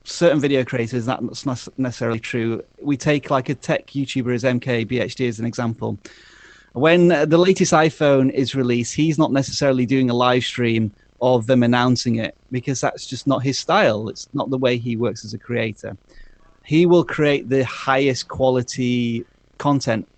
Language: English